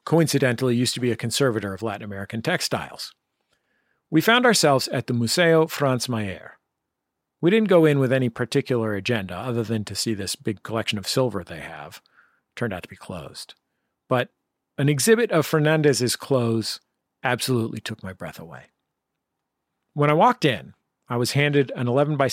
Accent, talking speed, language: American, 170 wpm, English